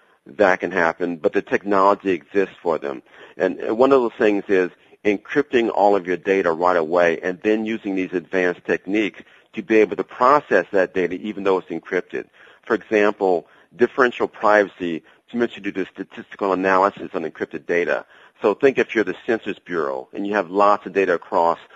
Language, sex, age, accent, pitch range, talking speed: English, male, 40-59, American, 90-110 Hz, 185 wpm